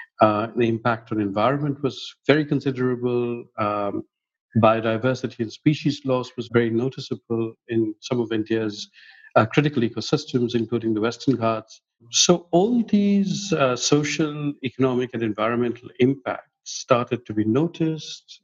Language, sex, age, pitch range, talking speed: English, male, 50-69, 115-140 Hz, 130 wpm